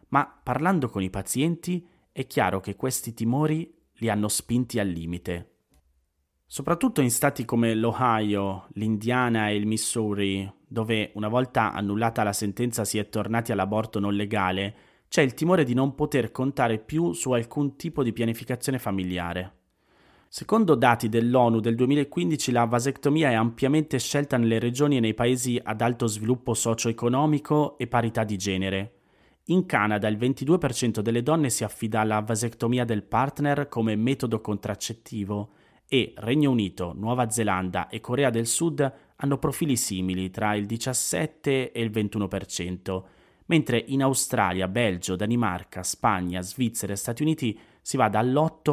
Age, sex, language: 30-49, male, Italian